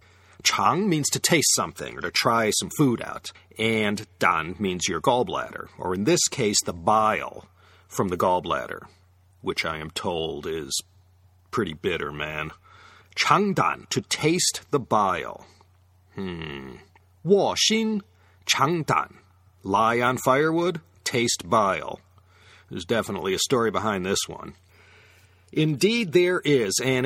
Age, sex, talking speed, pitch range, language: 40-59, male, 130 wpm, 95-140 Hz, English